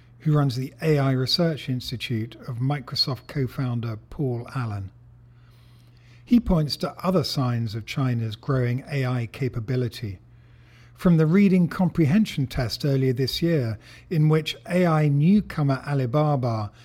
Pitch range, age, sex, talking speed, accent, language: 120-155 Hz, 50-69, male, 120 wpm, British, English